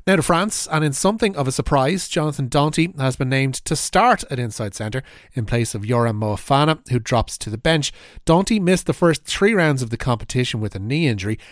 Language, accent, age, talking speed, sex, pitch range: English, Irish, 30-49, 220 wpm, male, 115-150 Hz